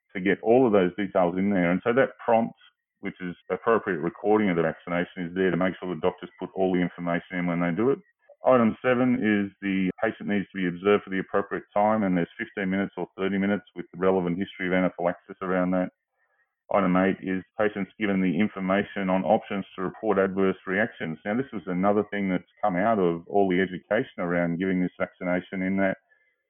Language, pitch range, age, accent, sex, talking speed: English, 90-105 Hz, 40-59, Australian, male, 215 wpm